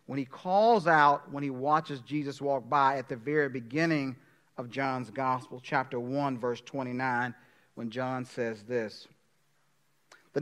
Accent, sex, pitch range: American, male, 130-175 Hz